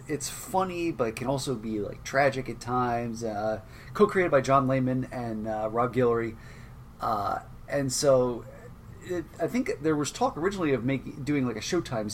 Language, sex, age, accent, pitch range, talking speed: English, male, 30-49, American, 115-135 Hz, 180 wpm